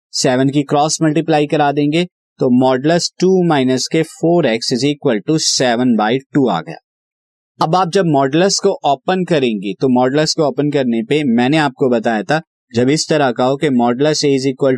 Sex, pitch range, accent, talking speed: male, 130-165 Hz, native, 195 wpm